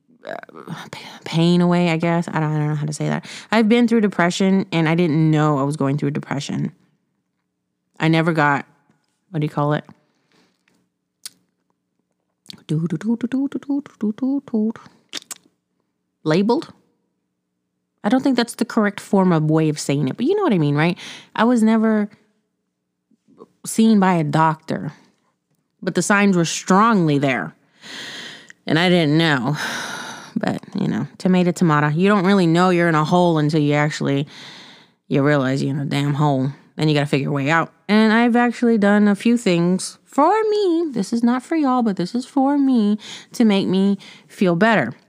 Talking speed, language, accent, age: 165 wpm, English, American, 30-49